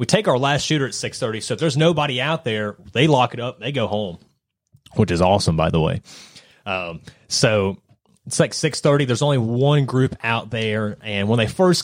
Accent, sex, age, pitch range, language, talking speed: American, male, 30-49, 105-140 Hz, English, 210 wpm